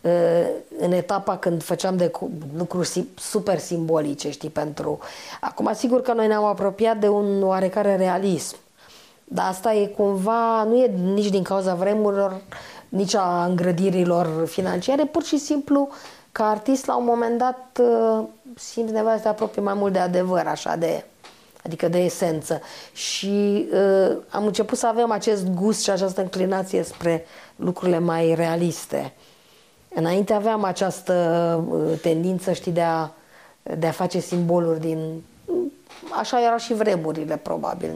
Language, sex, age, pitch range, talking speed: Romanian, female, 30-49, 175-225 Hz, 140 wpm